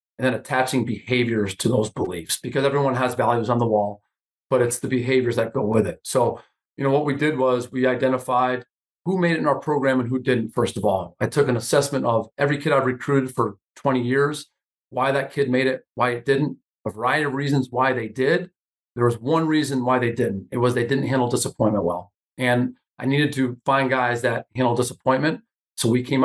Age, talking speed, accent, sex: 40-59, 220 wpm, American, male